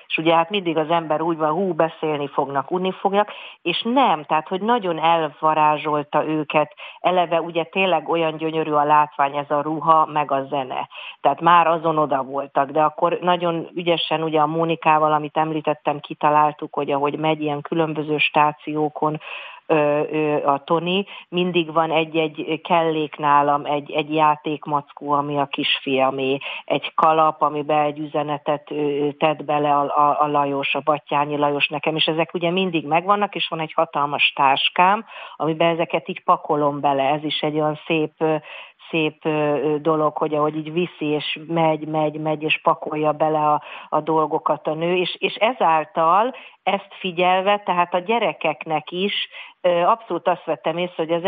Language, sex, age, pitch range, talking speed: Hungarian, female, 40-59, 150-170 Hz, 160 wpm